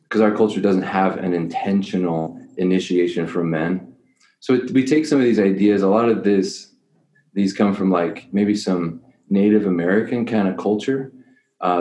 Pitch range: 90-105 Hz